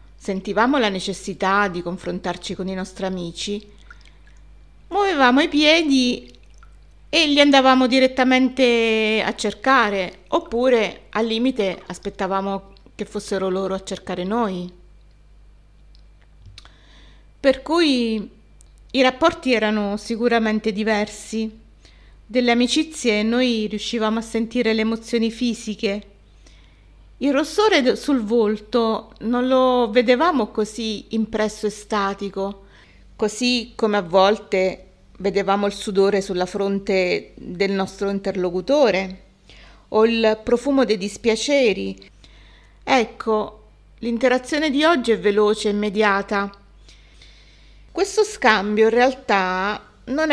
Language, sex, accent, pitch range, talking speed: Italian, female, native, 195-245 Hz, 100 wpm